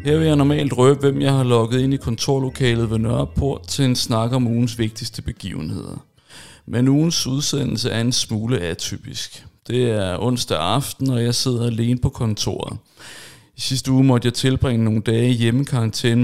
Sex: male